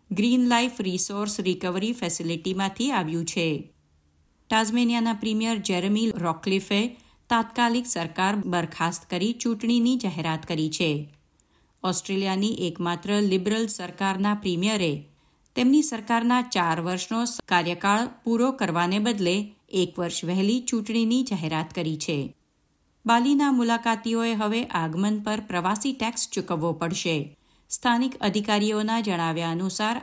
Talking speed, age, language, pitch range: 85 wpm, 50-69, Gujarati, 170-230 Hz